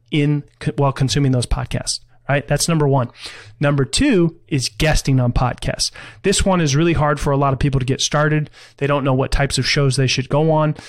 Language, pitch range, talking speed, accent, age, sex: English, 130-150 Hz, 215 wpm, American, 30-49, male